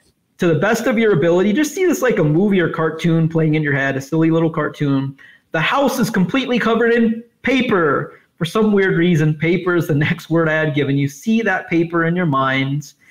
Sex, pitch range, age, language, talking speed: male, 155-215 Hz, 30-49, English, 220 wpm